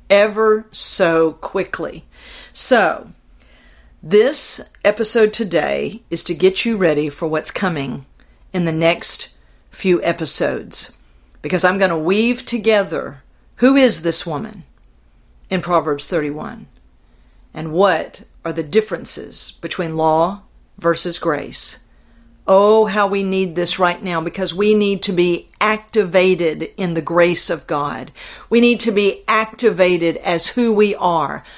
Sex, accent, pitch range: female, American, 160-215 Hz